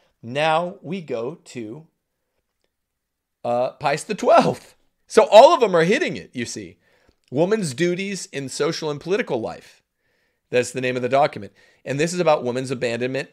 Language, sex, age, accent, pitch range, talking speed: English, male, 40-59, American, 125-185 Hz, 160 wpm